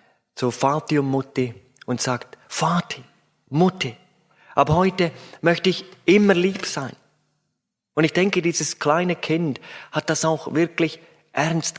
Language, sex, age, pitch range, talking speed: German, male, 30-49, 125-175 Hz, 130 wpm